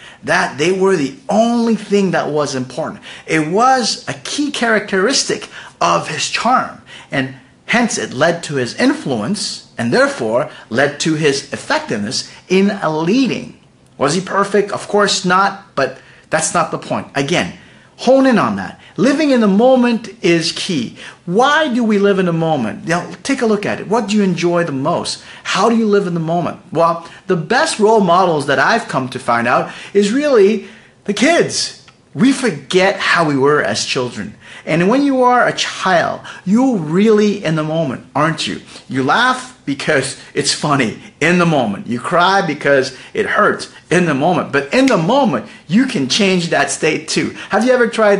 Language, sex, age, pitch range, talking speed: English, male, 40-59, 160-225 Hz, 185 wpm